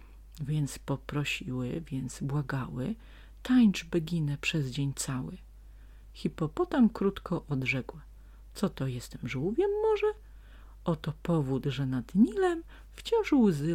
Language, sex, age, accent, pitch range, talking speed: Polish, female, 40-59, native, 140-200 Hz, 105 wpm